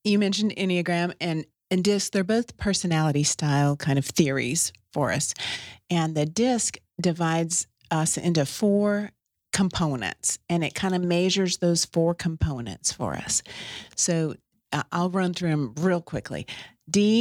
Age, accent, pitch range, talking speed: 40-59, American, 155-190 Hz, 145 wpm